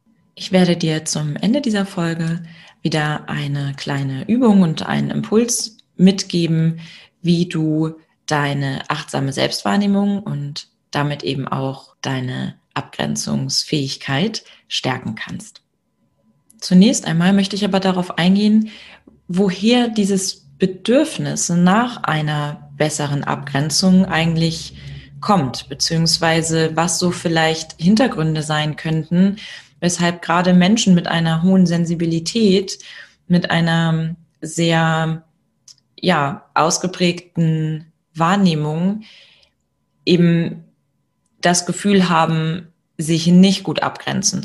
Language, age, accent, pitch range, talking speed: German, 30-49, German, 155-185 Hz, 95 wpm